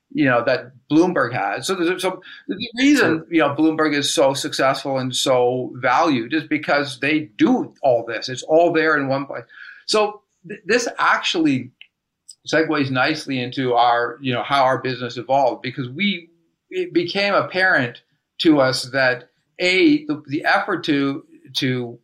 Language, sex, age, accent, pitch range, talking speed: English, male, 50-69, American, 130-165 Hz, 160 wpm